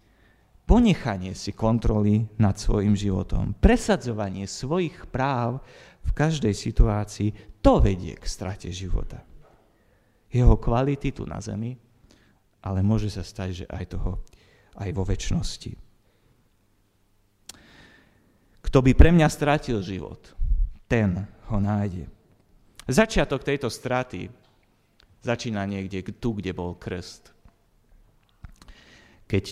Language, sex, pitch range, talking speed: Slovak, male, 95-120 Hz, 105 wpm